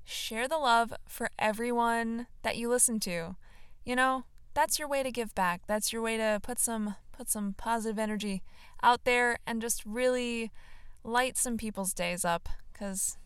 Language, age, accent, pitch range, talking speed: English, 20-39, American, 200-240 Hz, 170 wpm